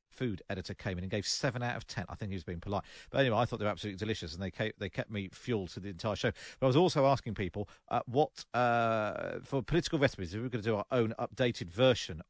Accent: British